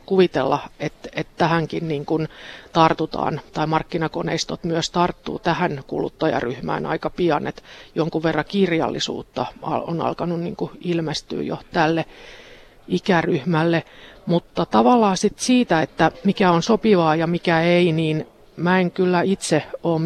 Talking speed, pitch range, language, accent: 125 wpm, 160-185 Hz, Finnish, native